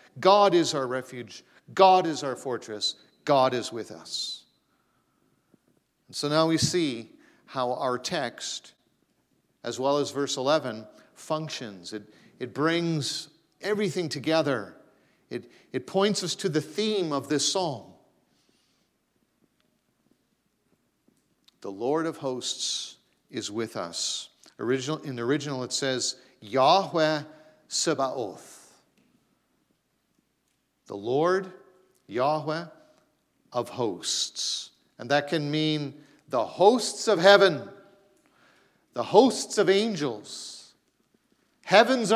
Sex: male